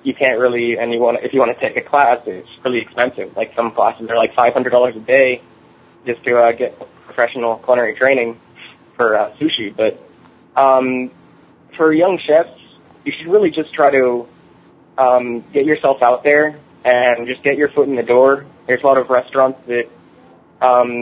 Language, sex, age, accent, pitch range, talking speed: English, male, 20-39, American, 120-140 Hz, 190 wpm